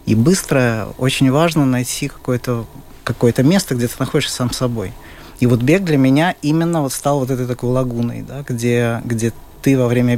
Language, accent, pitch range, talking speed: Russian, native, 120-150 Hz, 185 wpm